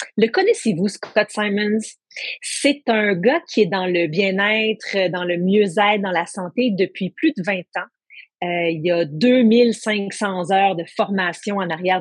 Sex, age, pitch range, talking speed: female, 40-59, 185-230 Hz, 165 wpm